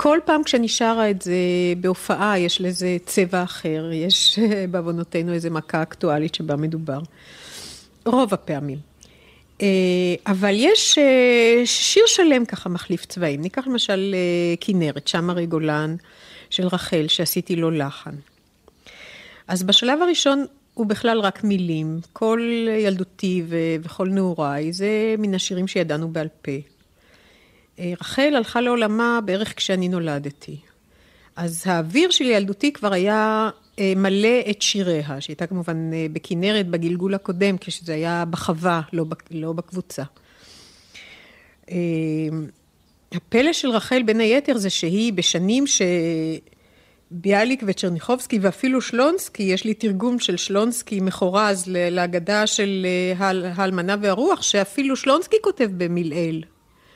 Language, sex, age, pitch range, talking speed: Hebrew, female, 50-69, 170-220 Hz, 115 wpm